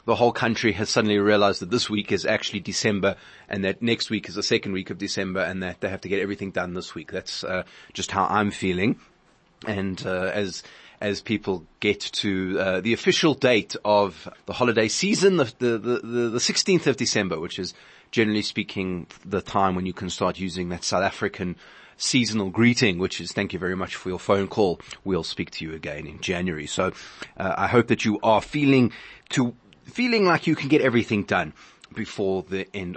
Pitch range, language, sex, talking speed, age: 95-120 Hz, English, male, 205 wpm, 30-49